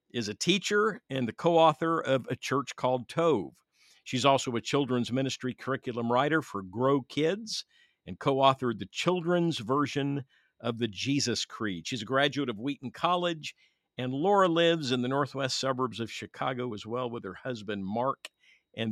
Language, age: English, 50-69